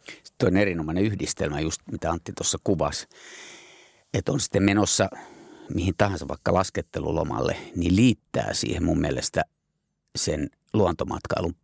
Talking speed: 125 wpm